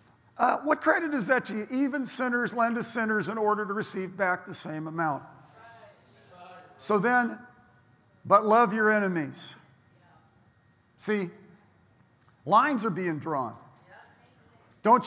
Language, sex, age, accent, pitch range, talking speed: English, male, 50-69, American, 175-220 Hz, 125 wpm